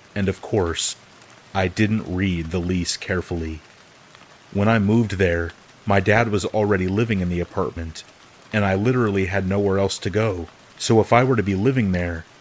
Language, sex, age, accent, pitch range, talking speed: English, male, 30-49, American, 90-105 Hz, 180 wpm